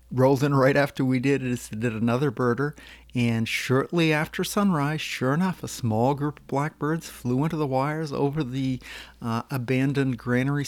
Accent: American